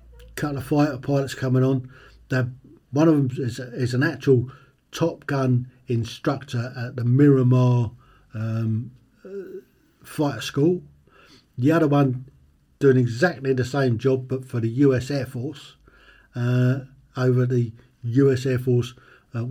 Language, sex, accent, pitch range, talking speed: English, male, British, 115-135 Hz, 140 wpm